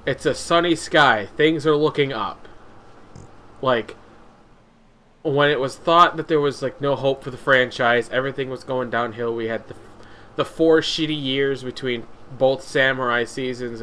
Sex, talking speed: male, 160 wpm